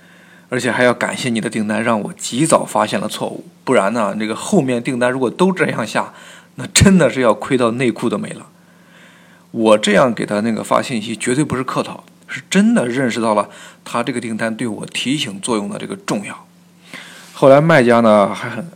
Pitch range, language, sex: 110-170 Hz, Chinese, male